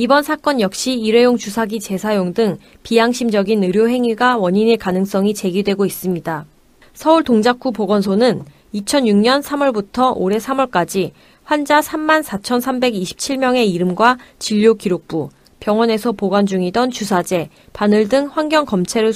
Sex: female